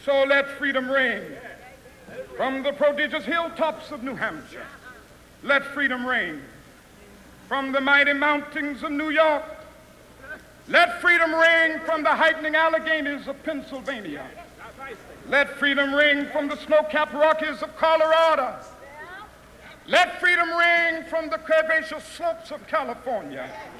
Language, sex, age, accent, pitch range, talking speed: English, male, 60-79, American, 290-330 Hz, 120 wpm